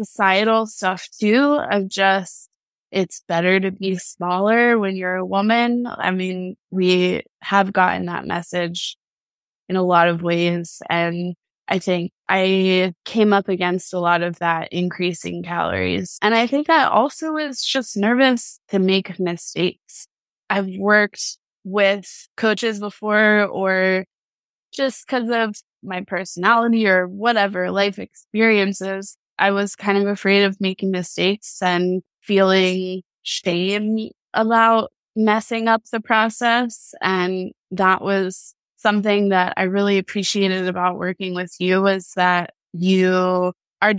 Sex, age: female, 20-39